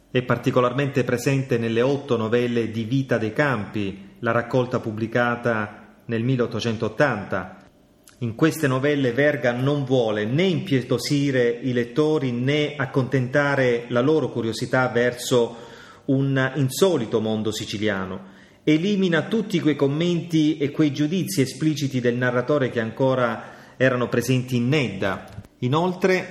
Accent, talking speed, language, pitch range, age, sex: native, 120 wpm, Italian, 120-150 Hz, 30-49, male